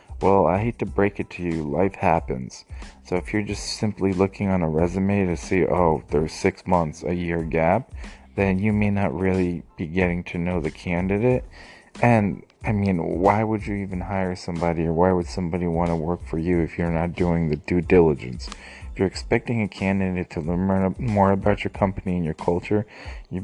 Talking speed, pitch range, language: 200 wpm, 85-100 Hz, English